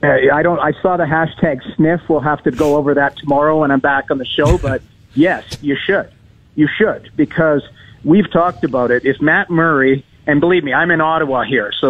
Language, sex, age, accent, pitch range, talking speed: English, male, 50-69, American, 140-170 Hz, 215 wpm